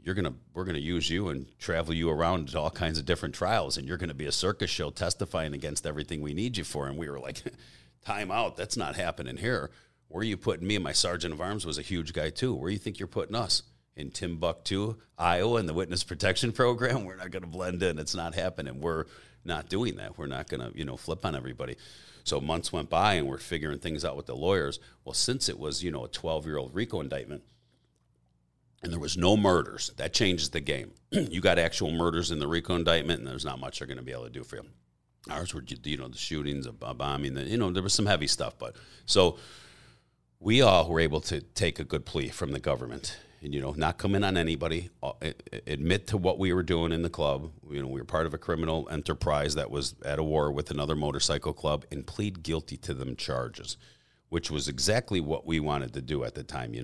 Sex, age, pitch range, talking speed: male, 40-59, 70-90 Hz, 240 wpm